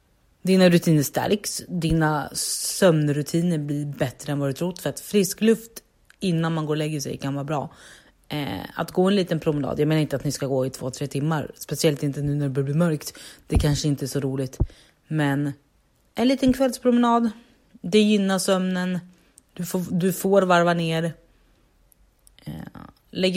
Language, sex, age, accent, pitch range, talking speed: Swedish, female, 30-49, native, 150-180 Hz, 180 wpm